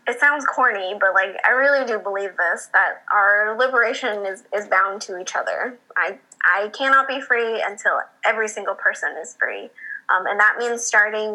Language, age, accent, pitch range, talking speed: English, 20-39, American, 205-260 Hz, 185 wpm